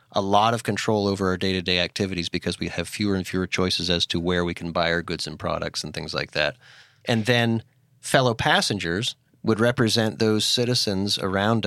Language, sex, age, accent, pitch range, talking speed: English, male, 30-49, American, 90-120 Hz, 195 wpm